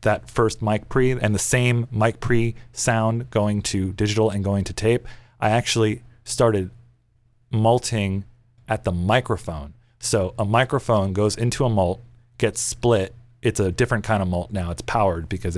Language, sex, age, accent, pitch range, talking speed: English, male, 30-49, American, 105-120 Hz, 165 wpm